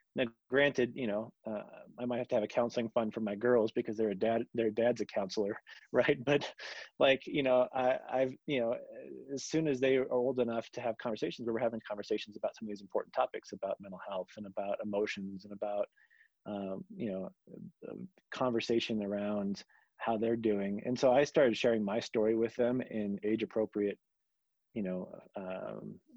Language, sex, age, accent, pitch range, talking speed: English, male, 30-49, American, 105-130 Hz, 190 wpm